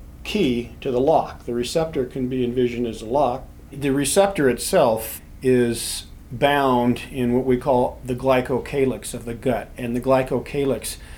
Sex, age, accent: male, 40-59, American